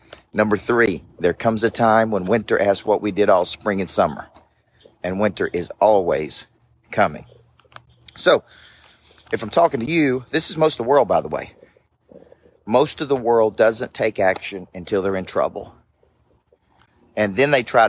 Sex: male